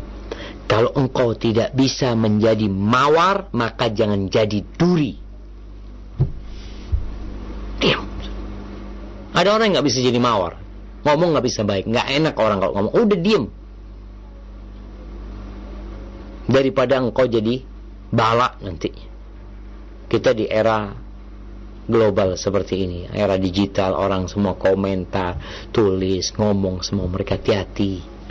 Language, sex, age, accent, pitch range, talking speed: Indonesian, male, 50-69, native, 95-105 Hz, 105 wpm